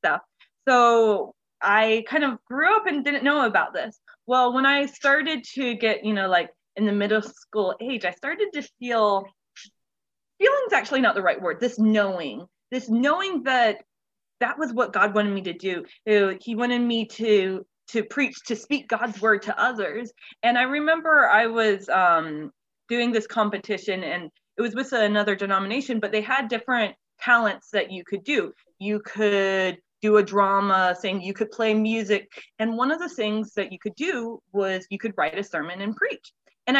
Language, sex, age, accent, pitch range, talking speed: English, female, 20-39, American, 210-265 Hz, 185 wpm